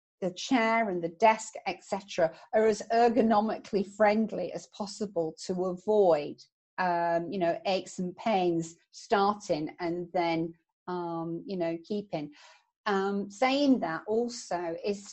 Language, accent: English, British